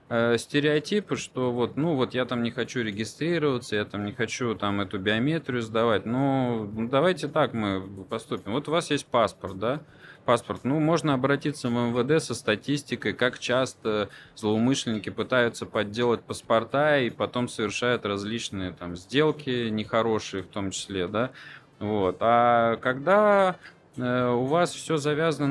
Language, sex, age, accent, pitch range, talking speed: Russian, male, 20-39, native, 105-130 Hz, 145 wpm